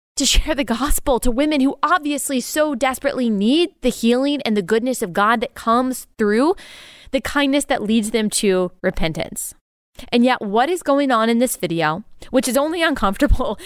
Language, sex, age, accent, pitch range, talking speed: English, female, 20-39, American, 210-265 Hz, 180 wpm